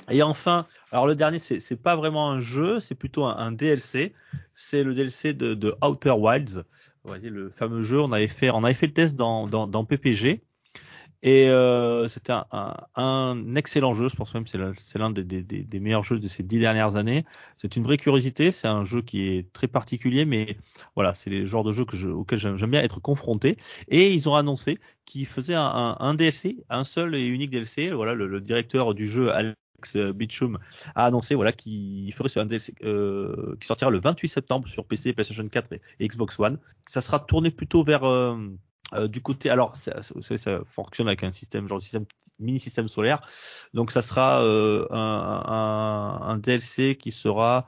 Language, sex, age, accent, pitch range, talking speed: French, male, 30-49, French, 110-135 Hz, 210 wpm